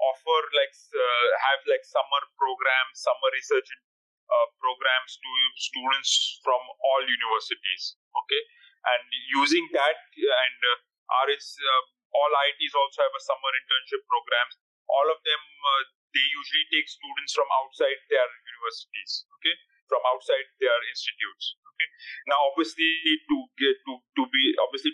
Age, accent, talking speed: 30-49, Indian, 140 wpm